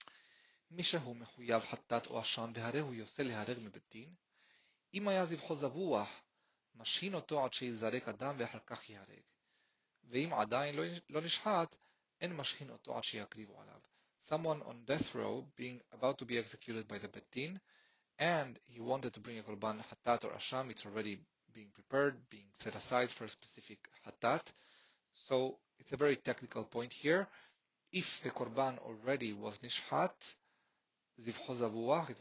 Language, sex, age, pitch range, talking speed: English, male, 30-49, 110-140 Hz, 90 wpm